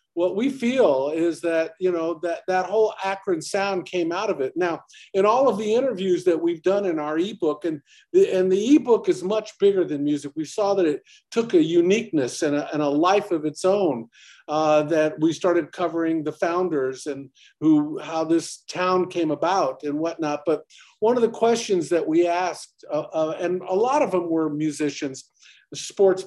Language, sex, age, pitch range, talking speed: English, male, 50-69, 150-195 Hz, 200 wpm